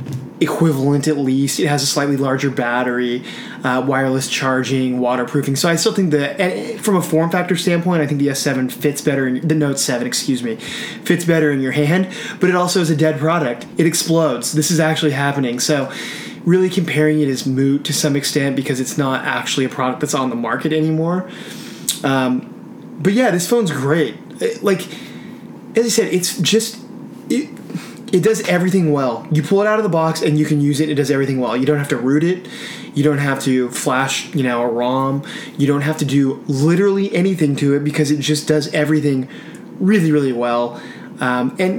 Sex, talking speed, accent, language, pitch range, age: male, 200 wpm, American, English, 135-180 Hz, 20-39